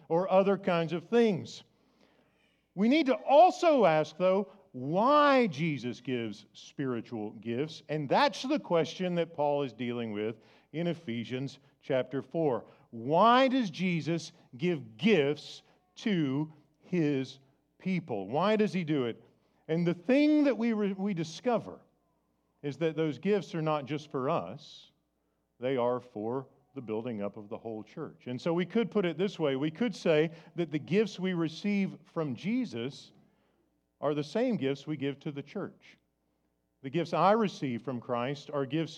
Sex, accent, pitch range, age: male, American, 135-190 Hz, 50-69